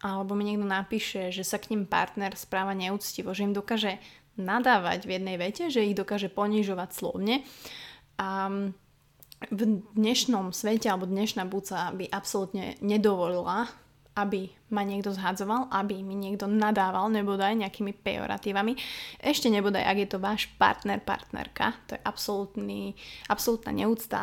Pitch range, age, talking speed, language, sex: 195-215 Hz, 20-39, 140 wpm, Slovak, female